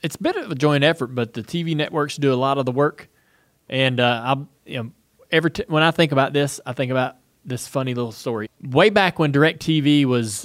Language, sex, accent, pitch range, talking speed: English, male, American, 130-170 Hz, 245 wpm